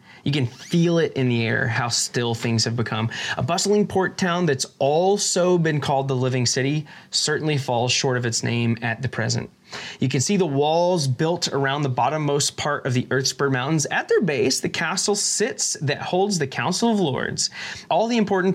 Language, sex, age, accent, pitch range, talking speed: English, male, 20-39, American, 125-170 Hz, 195 wpm